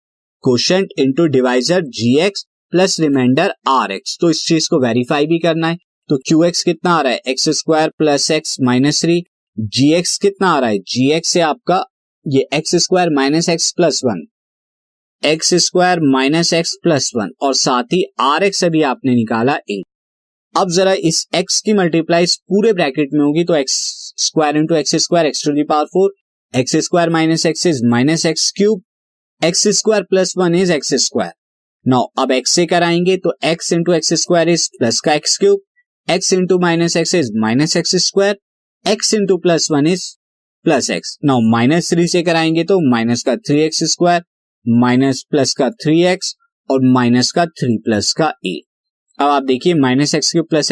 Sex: male